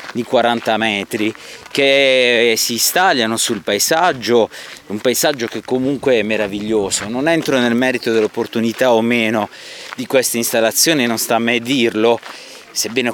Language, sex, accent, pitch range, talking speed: Italian, male, native, 115-155 Hz, 135 wpm